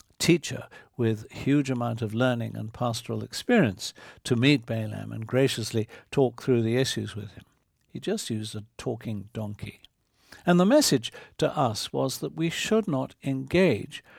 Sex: male